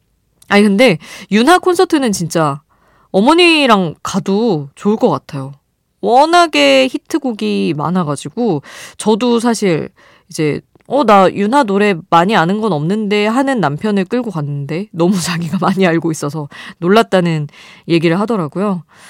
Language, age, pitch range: Korean, 20-39, 155-230 Hz